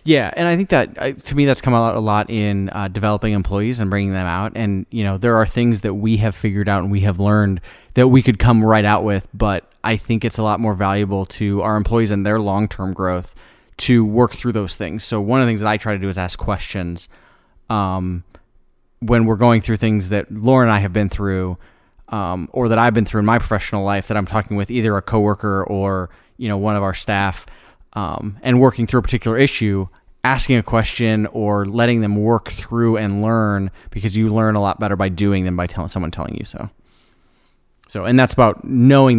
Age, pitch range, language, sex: 20-39, 95-115 Hz, English, male